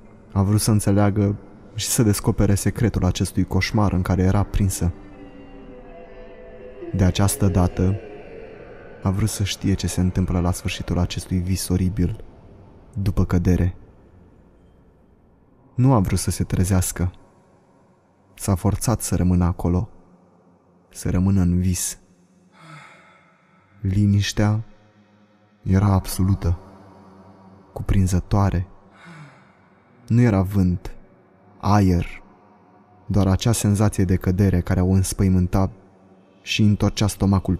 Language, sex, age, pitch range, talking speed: Romanian, male, 20-39, 95-105 Hz, 105 wpm